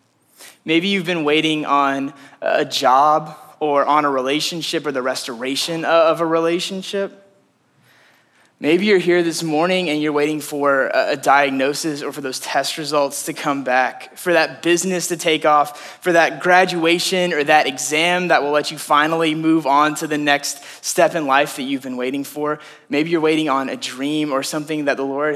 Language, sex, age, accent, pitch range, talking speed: English, male, 20-39, American, 135-165 Hz, 180 wpm